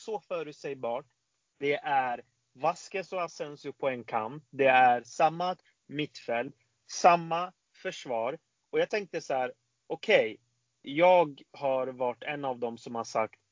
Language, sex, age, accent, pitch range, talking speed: Swedish, male, 30-49, native, 125-170 Hz, 145 wpm